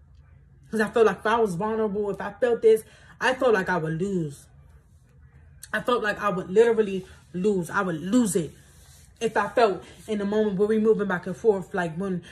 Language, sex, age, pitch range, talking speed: English, female, 20-39, 170-220 Hz, 210 wpm